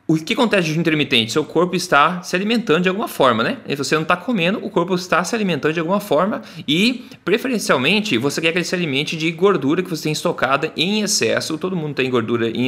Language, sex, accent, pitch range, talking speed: Portuguese, male, Brazilian, 125-180 Hz, 225 wpm